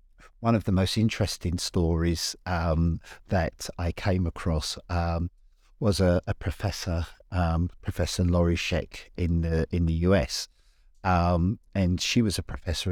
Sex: male